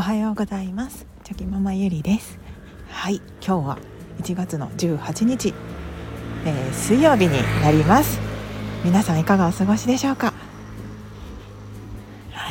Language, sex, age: Japanese, female, 40-59